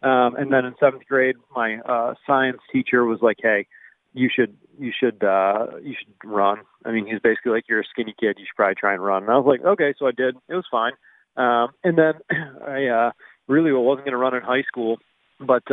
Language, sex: English, male